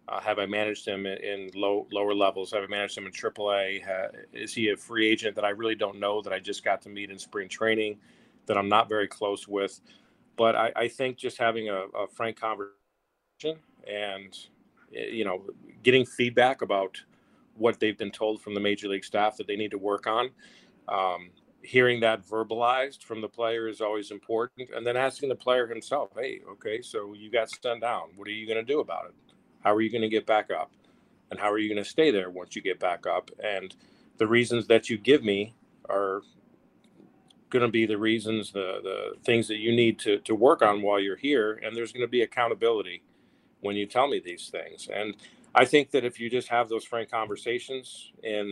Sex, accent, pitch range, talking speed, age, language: male, American, 100-120 Hz, 215 wpm, 40-59, English